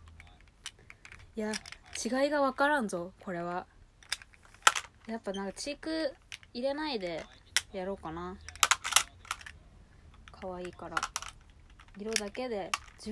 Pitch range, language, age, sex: 165-260 Hz, Japanese, 20-39, female